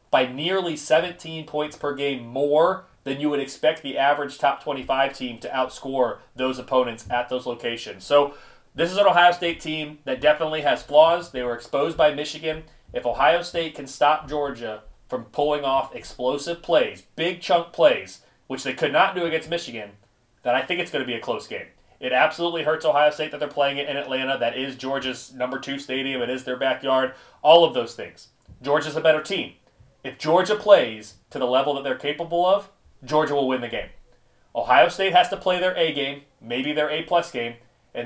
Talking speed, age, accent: 200 wpm, 30-49, American